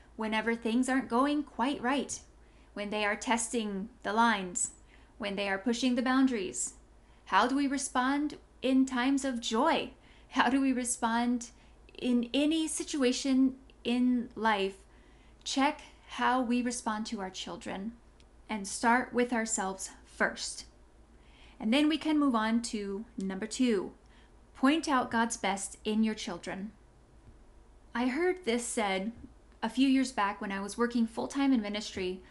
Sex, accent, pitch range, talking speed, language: female, American, 215-265 Hz, 145 wpm, English